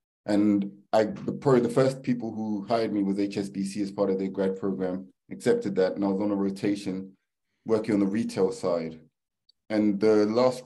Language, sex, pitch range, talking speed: English, male, 95-110 Hz, 185 wpm